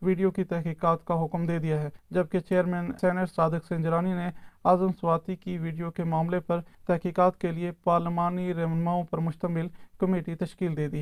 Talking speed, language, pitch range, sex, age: 165 wpm, Urdu, 165-185 Hz, male, 40-59